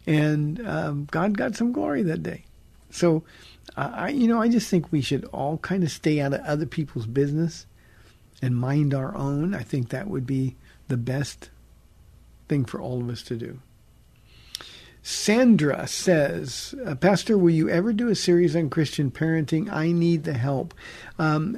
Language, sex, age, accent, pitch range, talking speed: English, male, 50-69, American, 135-170 Hz, 170 wpm